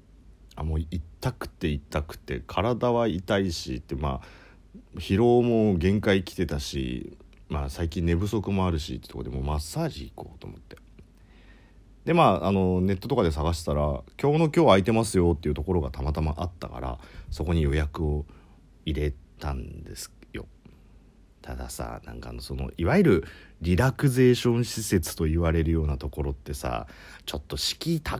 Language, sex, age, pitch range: Japanese, male, 40-59, 75-125 Hz